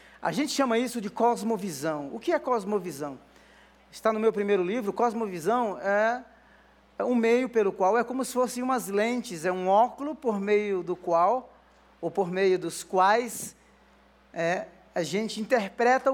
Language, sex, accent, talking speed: Portuguese, male, Brazilian, 160 wpm